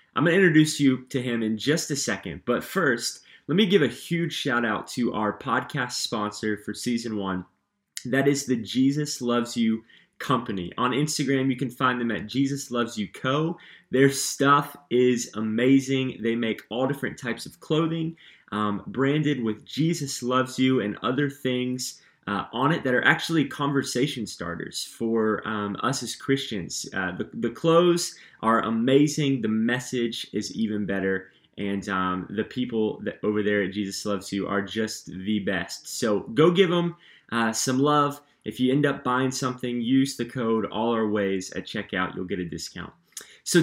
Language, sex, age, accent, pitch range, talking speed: English, male, 20-39, American, 110-145 Hz, 180 wpm